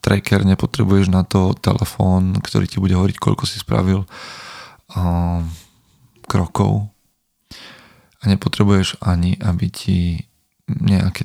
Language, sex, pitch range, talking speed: Slovak, male, 90-105 Hz, 105 wpm